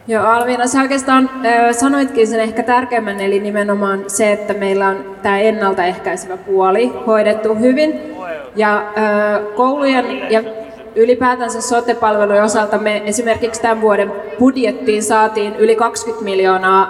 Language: Finnish